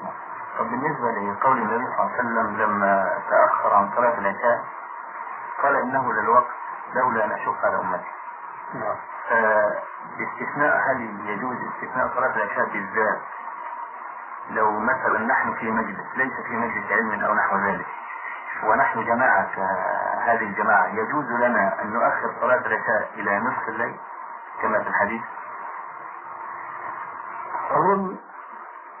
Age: 50-69